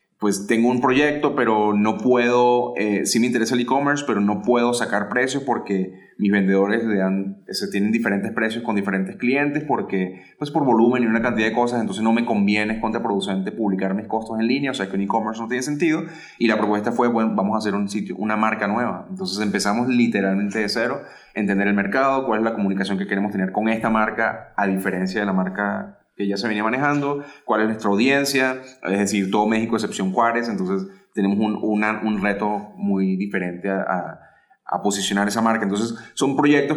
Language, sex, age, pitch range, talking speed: Spanish, male, 30-49, 100-125 Hz, 205 wpm